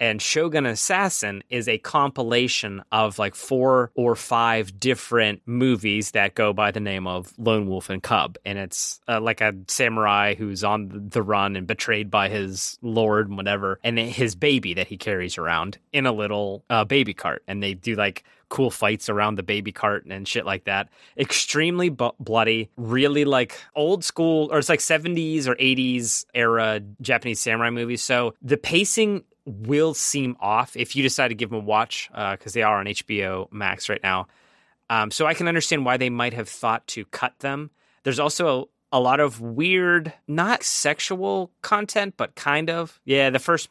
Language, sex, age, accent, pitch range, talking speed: English, male, 20-39, American, 105-135 Hz, 185 wpm